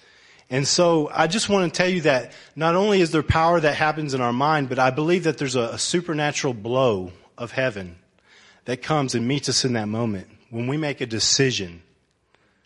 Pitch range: 115-160 Hz